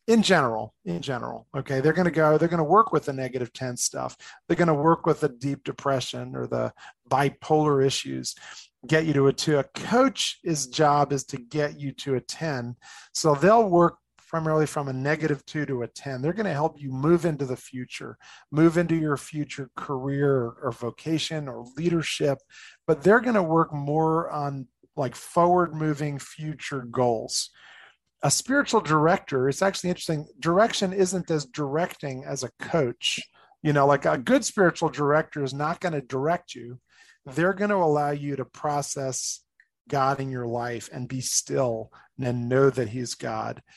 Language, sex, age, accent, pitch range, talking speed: English, male, 40-59, American, 130-160 Hz, 180 wpm